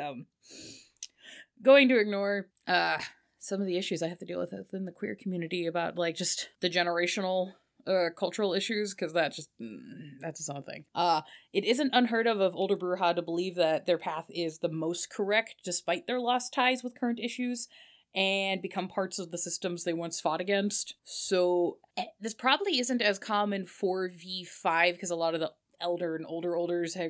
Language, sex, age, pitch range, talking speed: English, female, 20-39, 165-195 Hz, 195 wpm